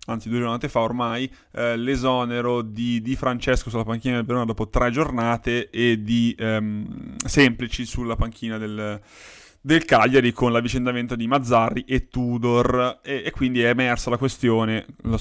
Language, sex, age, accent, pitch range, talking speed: Italian, male, 20-39, native, 115-130 Hz, 160 wpm